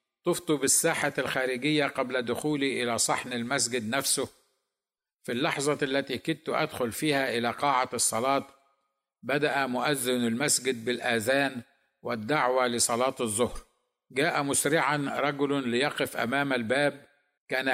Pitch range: 120-145 Hz